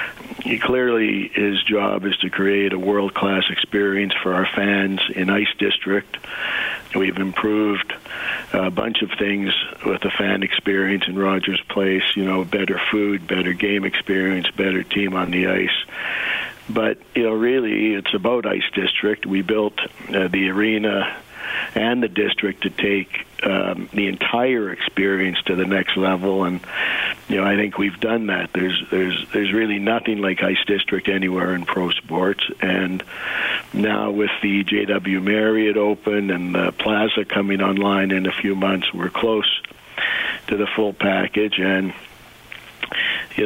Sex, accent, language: male, American, English